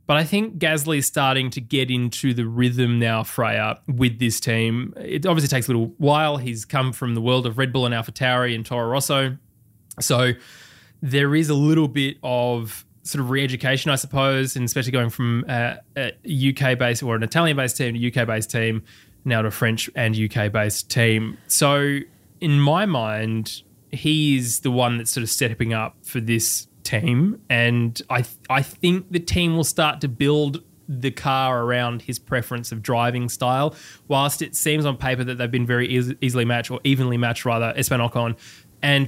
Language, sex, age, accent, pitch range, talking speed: English, male, 20-39, Australian, 115-140 Hz, 185 wpm